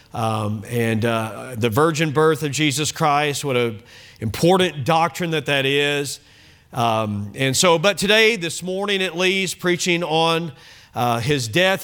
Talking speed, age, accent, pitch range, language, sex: 150 wpm, 40-59, American, 120-190 Hz, English, male